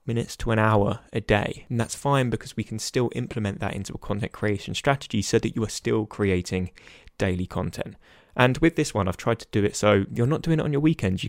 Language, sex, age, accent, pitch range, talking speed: English, male, 20-39, British, 105-140 Hz, 245 wpm